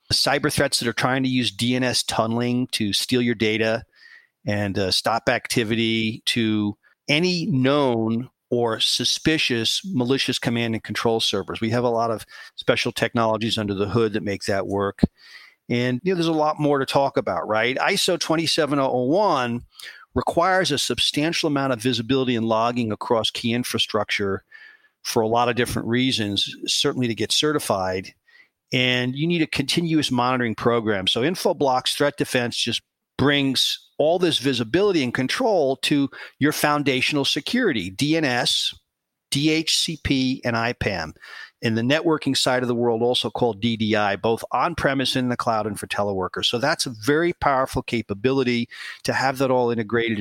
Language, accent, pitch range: English, American, 115-140 Hz